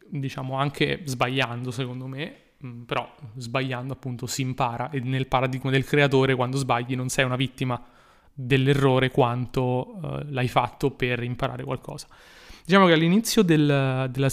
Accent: native